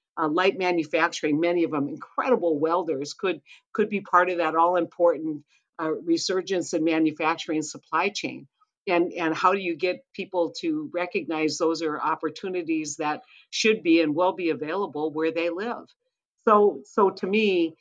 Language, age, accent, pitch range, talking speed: English, 50-69, American, 160-200 Hz, 160 wpm